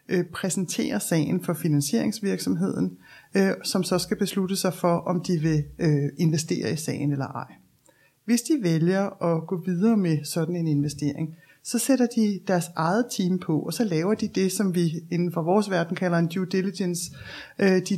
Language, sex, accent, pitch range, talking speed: Danish, male, native, 165-215 Hz, 170 wpm